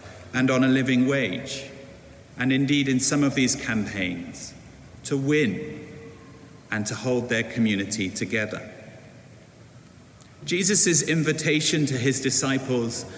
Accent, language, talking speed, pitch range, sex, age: British, English, 115 wpm, 120-145 Hz, male, 50-69